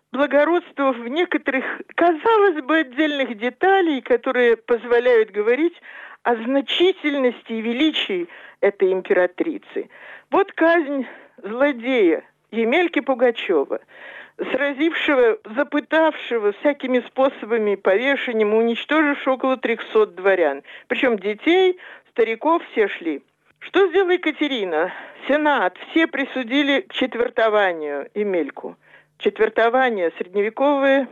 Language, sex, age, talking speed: Russian, male, 50-69, 90 wpm